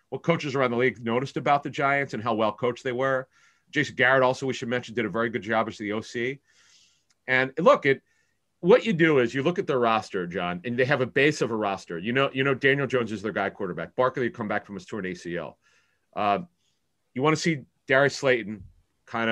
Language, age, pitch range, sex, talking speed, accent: English, 40-59, 115-140 Hz, male, 235 wpm, American